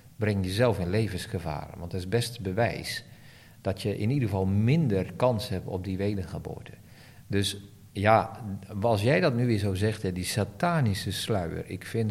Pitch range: 95-125 Hz